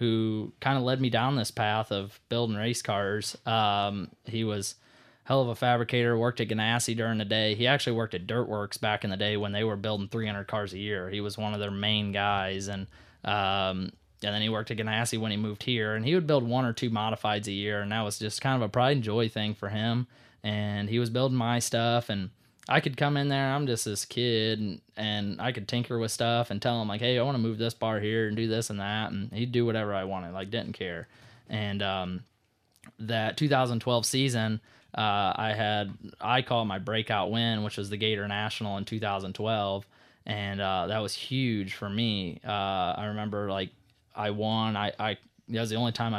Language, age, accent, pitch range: English, 20-39, American, 100-115 Hz